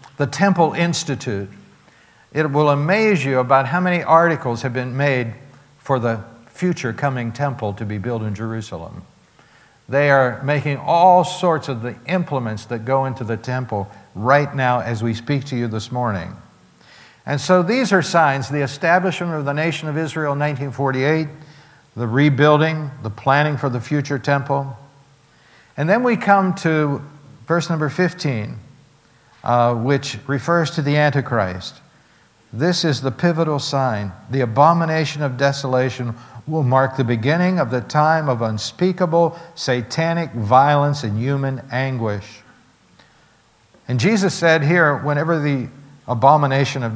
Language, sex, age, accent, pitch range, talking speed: English, male, 60-79, American, 120-155 Hz, 145 wpm